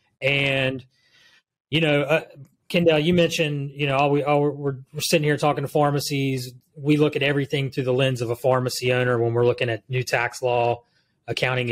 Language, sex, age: English, male, 30-49